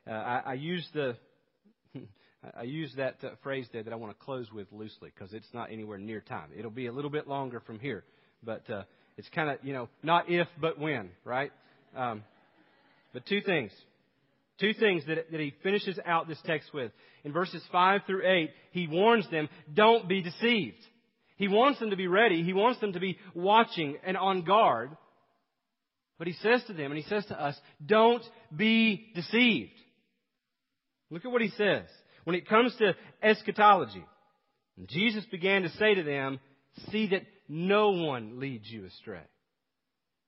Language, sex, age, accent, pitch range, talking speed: English, male, 40-59, American, 145-205 Hz, 180 wpm